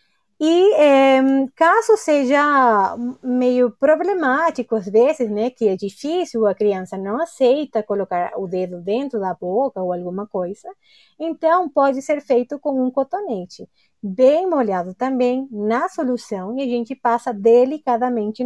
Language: Portuguese